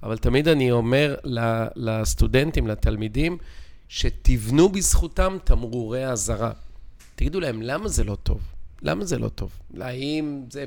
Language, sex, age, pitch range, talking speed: Hebrew, male, 40-59, 125-165 Hz, 125 wpm